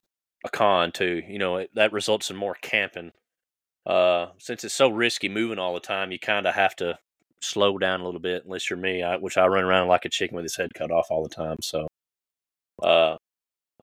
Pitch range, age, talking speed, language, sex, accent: 85-105 Hz, 30-49, 215 wpm, English, male, American